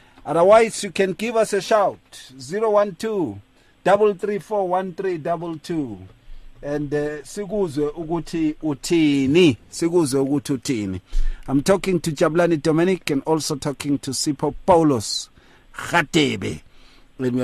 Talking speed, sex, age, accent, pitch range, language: 105 wpm, male, 50-69, South African, 125-170 Hz, English